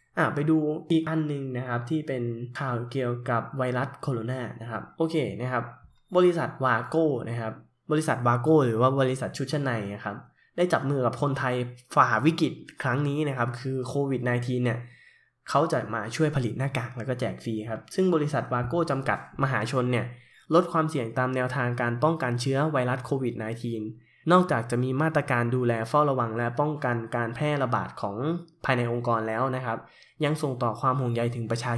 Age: 10-29